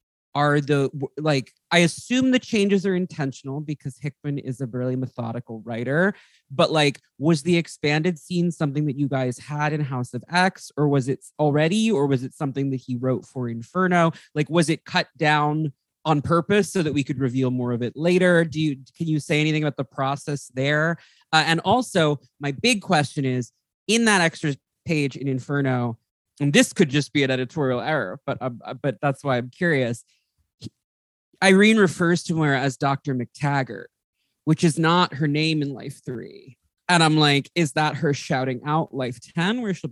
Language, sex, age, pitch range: English, male, 20-39, 130-165 Hz